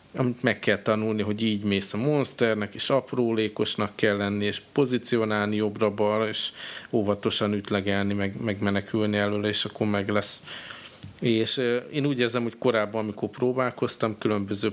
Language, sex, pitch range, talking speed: Hungarian, male, 105-115 Hz, 145 wpm